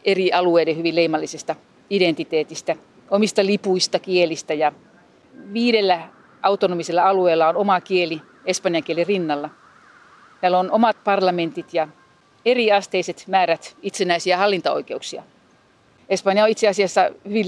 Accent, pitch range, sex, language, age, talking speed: native, 170-220 Hz, female, Finnish, 40-59, 115 wpm